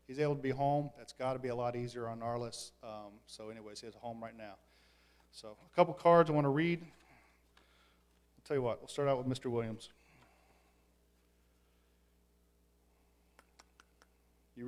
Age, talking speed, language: 40-59, 175 wpm, English